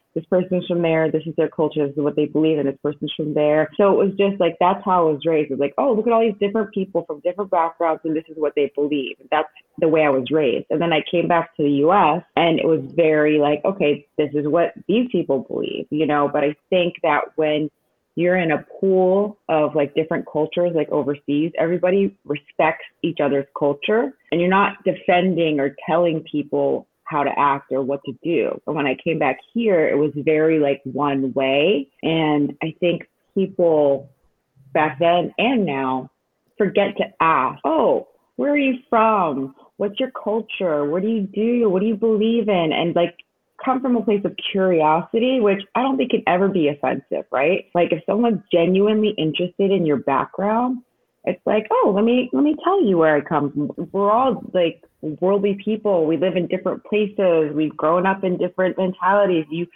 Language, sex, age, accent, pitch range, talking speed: English, female, 30-49, American, 150-200 Hz, 205 wpm